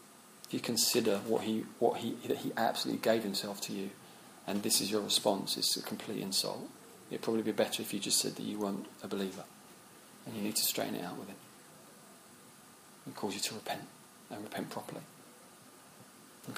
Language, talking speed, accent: English, 195 wpm, British